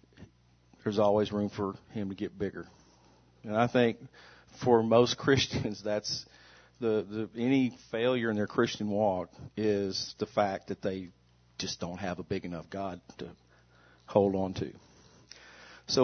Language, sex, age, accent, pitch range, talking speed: English, male, 50-69, American, 90-120 Hz, 150 wpm